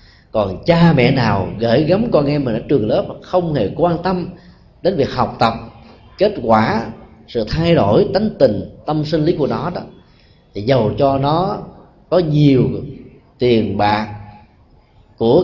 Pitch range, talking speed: 110-160 Hz, 165 wpm